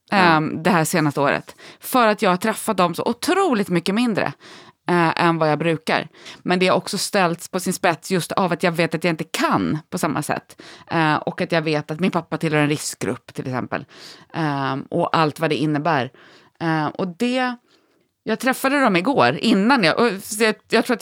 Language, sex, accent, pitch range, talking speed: English, female, Swedish, 165-235 Hz, 205 wpm